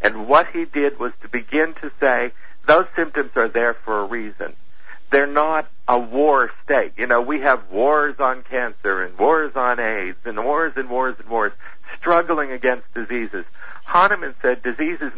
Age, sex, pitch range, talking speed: 60-79, male, 125-155 Hz, 180 wpm